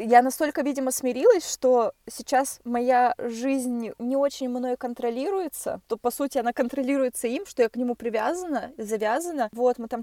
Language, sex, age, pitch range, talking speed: Russian, female, 20-39, 215-255 Hz, 160 wpm